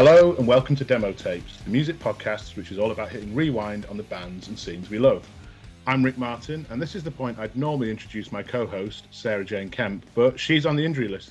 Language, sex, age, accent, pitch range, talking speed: English, male, 30-49, British, 105-125 Hz, 235 wpm